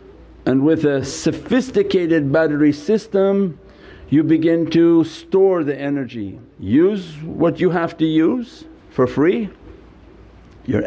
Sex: male